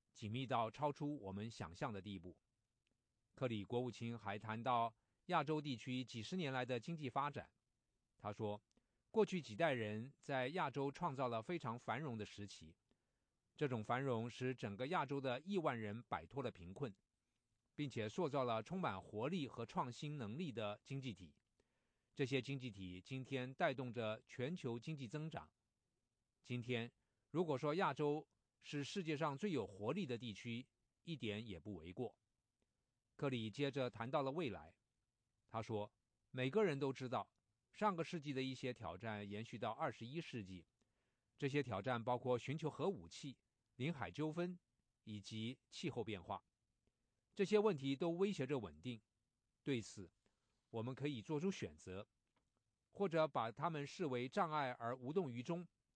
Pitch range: 110-145 Hz